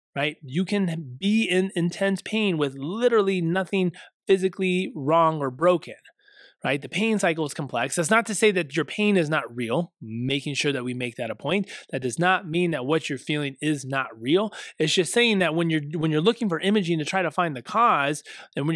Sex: male